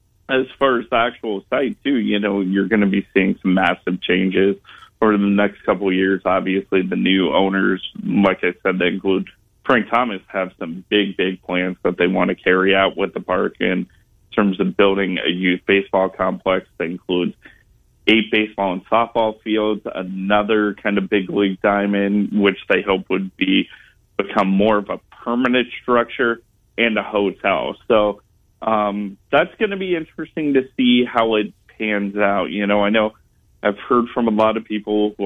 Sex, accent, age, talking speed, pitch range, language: male, American, 20-39, 180 wpm, 95-115 Hz, English